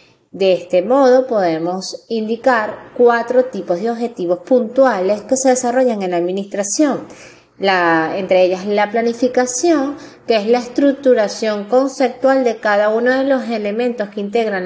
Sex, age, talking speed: female, 20-39, 135 wpm